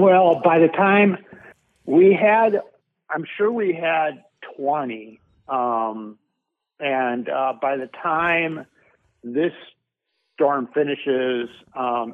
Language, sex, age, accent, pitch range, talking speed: English, male, 50-69, American, 115-155 Hz, 105 wpm